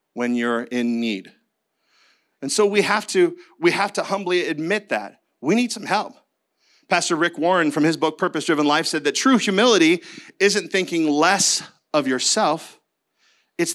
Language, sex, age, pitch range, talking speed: English, male, 40-59, 150-235 Hz, 165 wpm